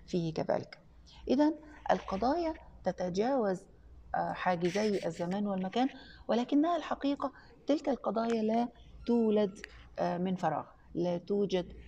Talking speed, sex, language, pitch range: 85 wpm, female, Arabic, 170-210 Hz